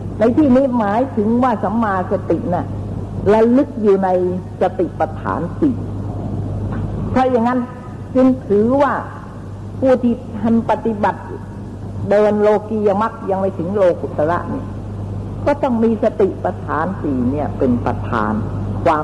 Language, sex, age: Thai, female, 60-79